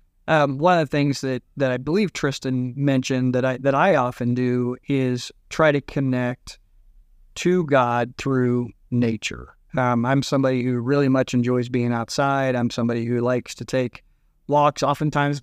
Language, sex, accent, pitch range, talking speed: English, male, American, 125-140 Hz, 165 wpm